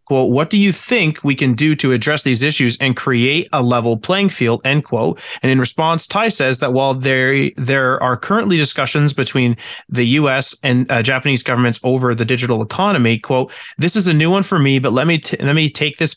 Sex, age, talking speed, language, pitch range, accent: male, 30-49, 220 wpm, English, 120-150 Hz, American